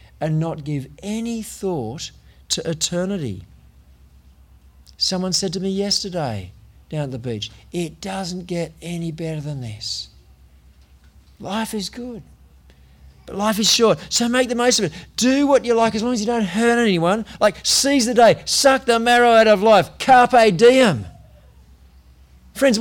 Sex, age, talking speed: male, 50-69, 160 wpm